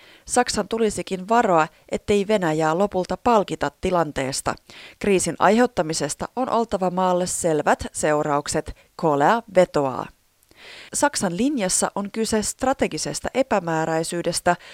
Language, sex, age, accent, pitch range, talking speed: Finnish, female, 30-49, native, 165-220 Hz, 95 wpm